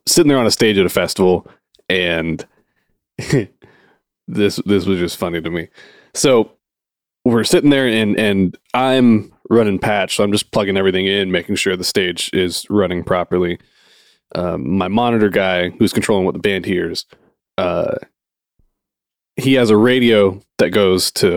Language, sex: English, male